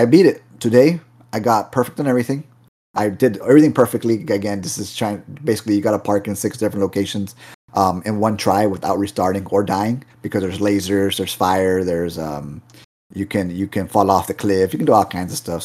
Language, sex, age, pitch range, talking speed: English, male, 30-49, 95-120 Hz, 215 wpm